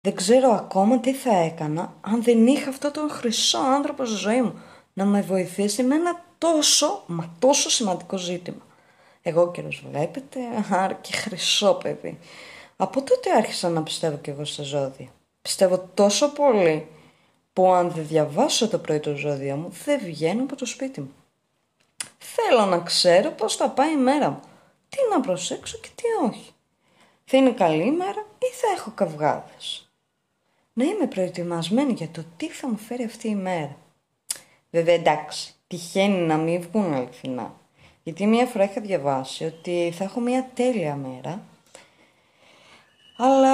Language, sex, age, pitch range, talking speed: Greek, female, 20-39, 170-265 Hz, 155 wpm